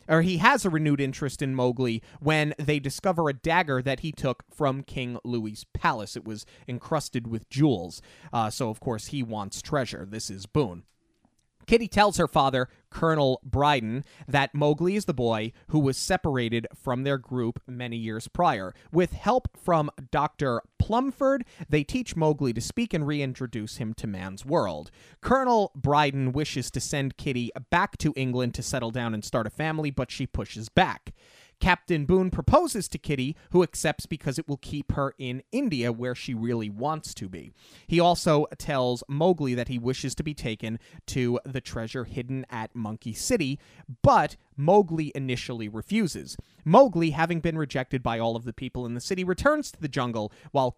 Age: 30-49